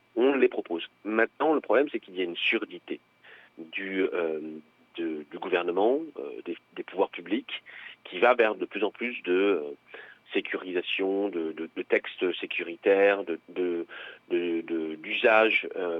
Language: French